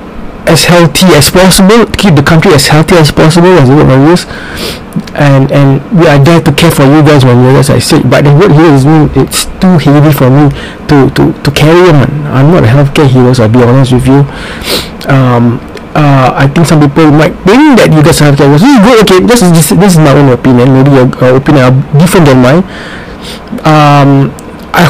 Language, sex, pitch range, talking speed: English, male, 135-170 Hz, 215 wpm